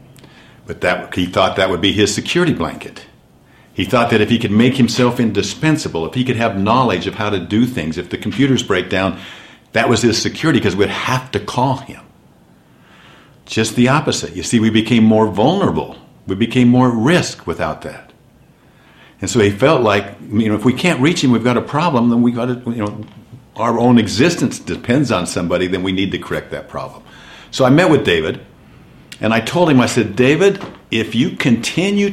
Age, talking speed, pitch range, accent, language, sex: 60-79, 205 wpm, 95-125 Hz, American, English, male